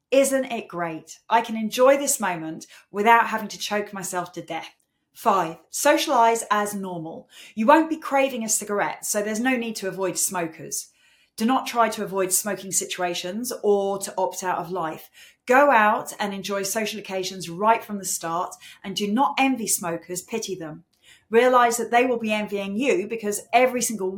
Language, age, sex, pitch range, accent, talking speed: English, 30-49, female, 185-225 Hz, British, 180 wpm